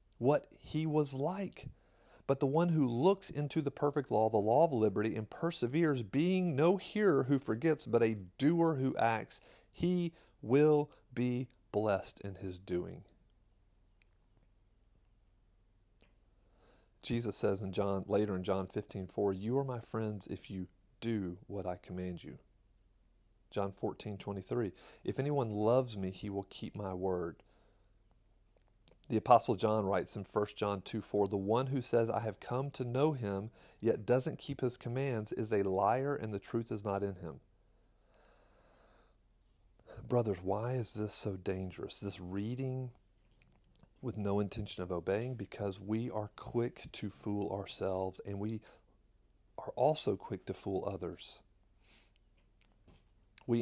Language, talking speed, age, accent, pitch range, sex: English, 145 wpm, 40-59, American, 100-125 Hz, male